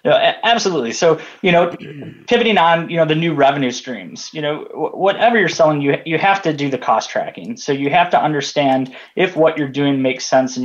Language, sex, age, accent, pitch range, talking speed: English, male, 20-39, American, 125-170 Hz, 215 wpm